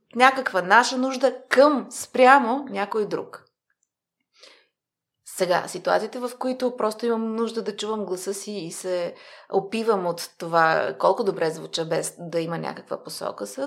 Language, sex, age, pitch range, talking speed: Bulgarian, female, 30-49, 185-265 Hz, 140 wpm